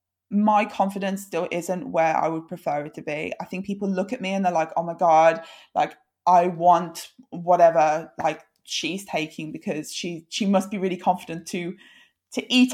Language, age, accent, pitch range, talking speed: English, 20-39, British, 170-220 Hz, 190 wpm